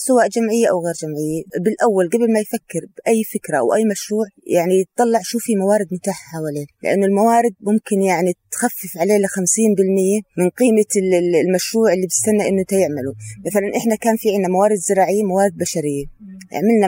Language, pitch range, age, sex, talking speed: Arabic, 175-220 Hz, 30-49, female, 165 wpm